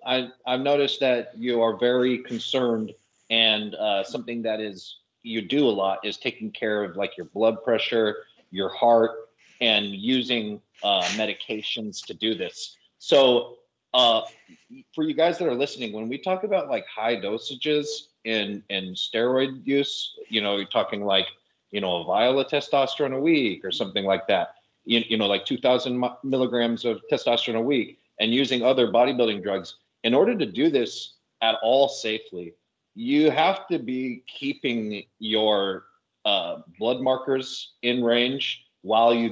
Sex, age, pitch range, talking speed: male, 30-49, 110-135 Hz, 165 wpm